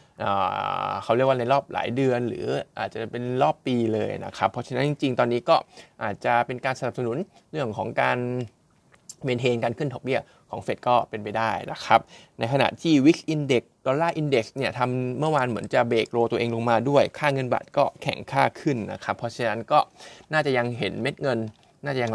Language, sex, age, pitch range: Thai, male, 20-39, 115-140 Hz